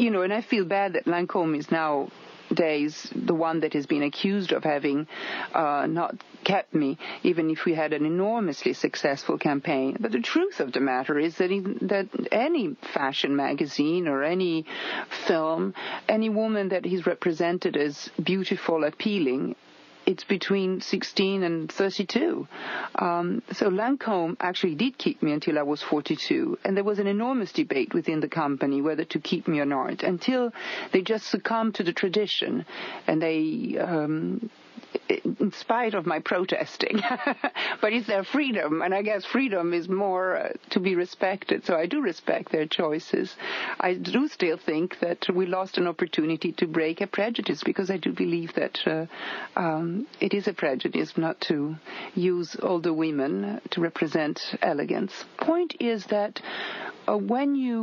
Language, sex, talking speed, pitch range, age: English, female, 165 wpm, 160-215 Hz, 40-59